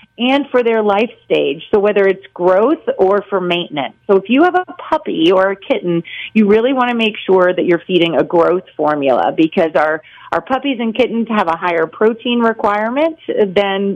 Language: English